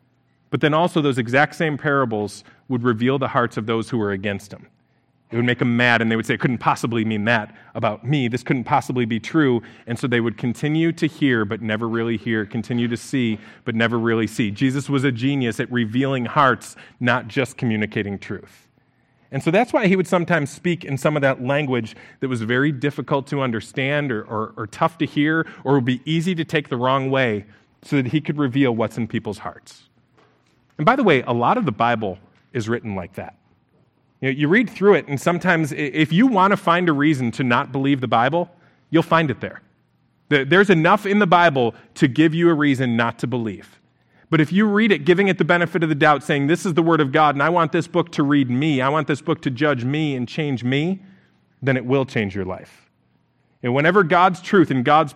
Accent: American